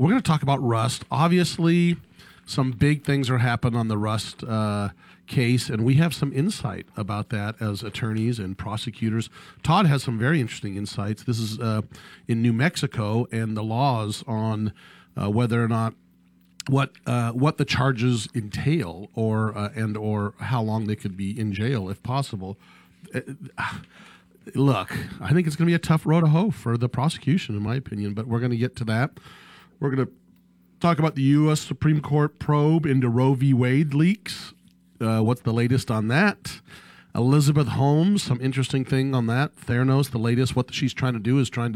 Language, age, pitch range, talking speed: English, 40-59, 110-140 Hz, 185 wpm